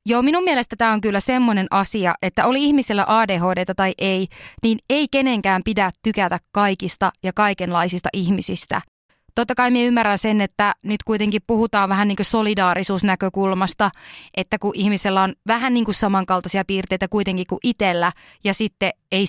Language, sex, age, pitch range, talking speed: Finnish, female, 20-39, 190-240 Hz, 160 wpm